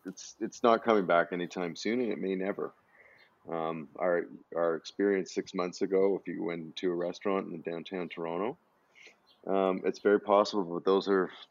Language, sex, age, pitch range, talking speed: English, male, 30-49, 85-100 Hz, 175 wpm